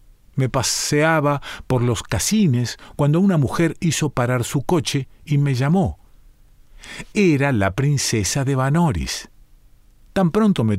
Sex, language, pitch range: male, Spanish, 105-145 Hz